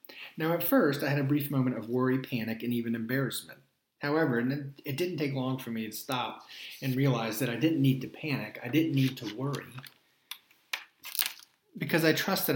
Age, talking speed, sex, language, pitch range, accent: 40-59, 190 wpm, male, English, 120-150 Hz, American